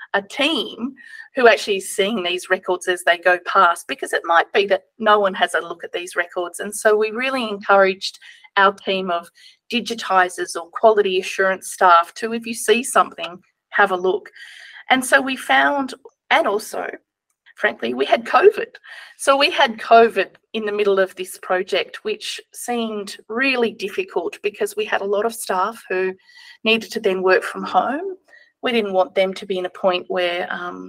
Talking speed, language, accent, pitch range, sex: 185 wpm, English, Australian, 185-240 Hz, female